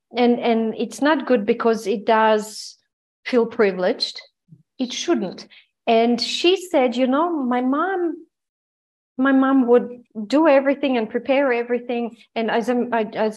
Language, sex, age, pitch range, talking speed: English, female, 40-59, 200-250 Hz, 130 wpm